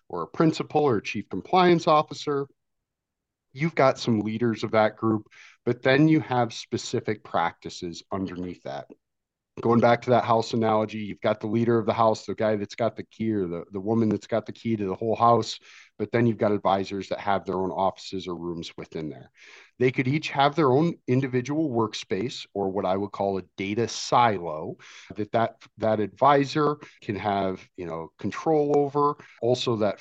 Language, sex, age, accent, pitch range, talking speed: English, male, 50-69, American, 100-125 Hz, 190 wpm